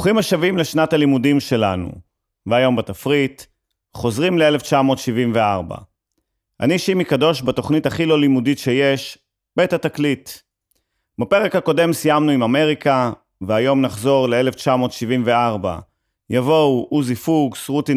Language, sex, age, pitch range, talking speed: Hebrew, male, 30-49, 120-150 Hz, 105 wpm